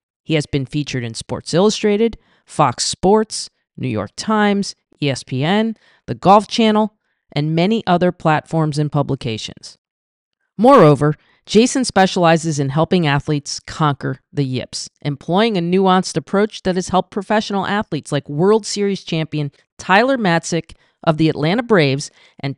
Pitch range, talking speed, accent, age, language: 145-195 Hz, 135 wpm, American, 40-59, English